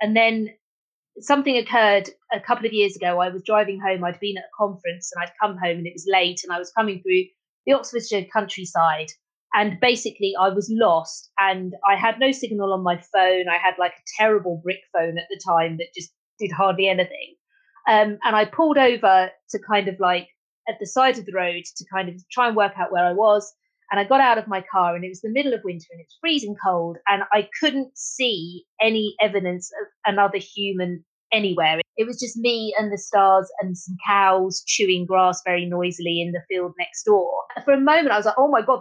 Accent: British